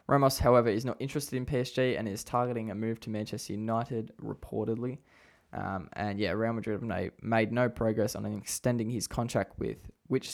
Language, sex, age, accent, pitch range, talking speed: English, male, 10-29, Australian, 105-125 Hz, 180 wpm